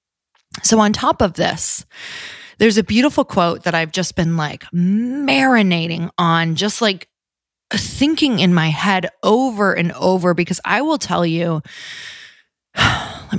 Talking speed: 140 wpm